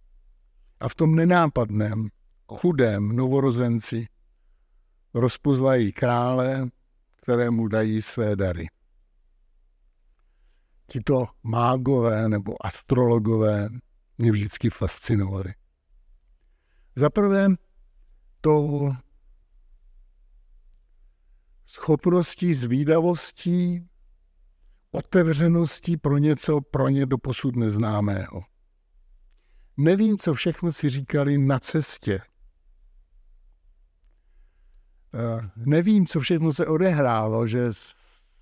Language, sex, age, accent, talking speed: Czech, male, 60-79, native, 70 wpm